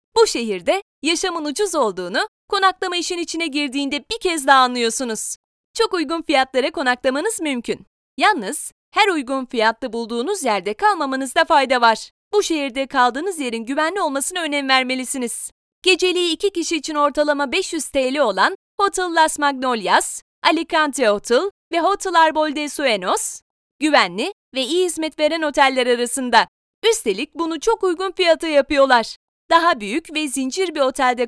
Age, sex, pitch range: 30-49, female, 265-360 Hz